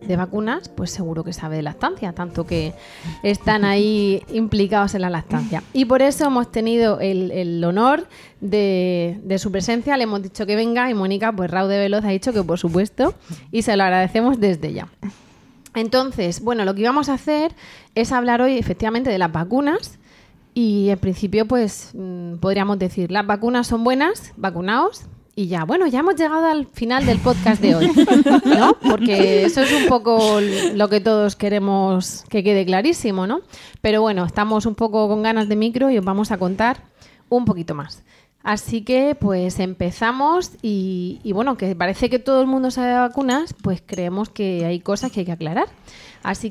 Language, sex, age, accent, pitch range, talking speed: Spanish, female, 30-49, Spanish, 190-250 Hz, 185 wpm